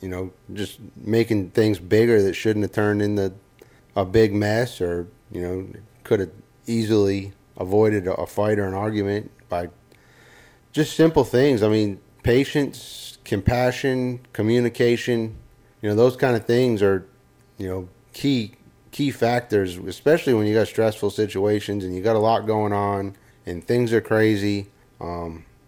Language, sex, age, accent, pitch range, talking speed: English, male, 30-49, American, 100-120 Hz, 150 wpm